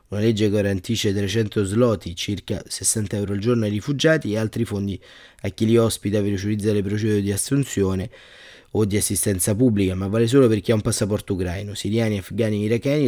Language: Italian